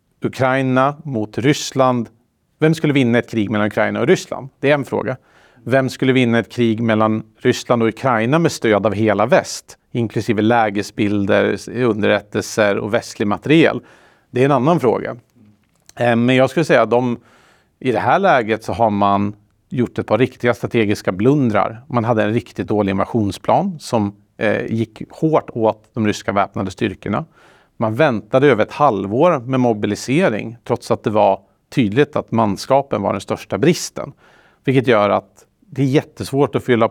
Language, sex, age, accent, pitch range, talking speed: Swedish, male, 40-59, Norwegian, 105-130 Hz, 165 wpm